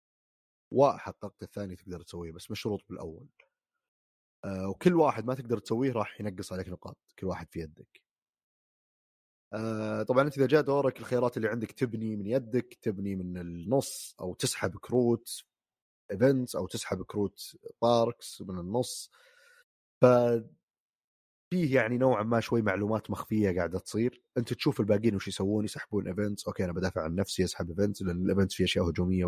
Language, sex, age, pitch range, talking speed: Arabic, male, 30-49, 90-120 Hz, 155 wpm